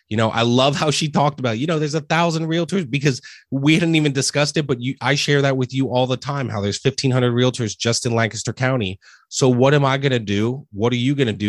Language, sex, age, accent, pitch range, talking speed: English, male, 30-49, American, 105-130 Hz, 265 wpm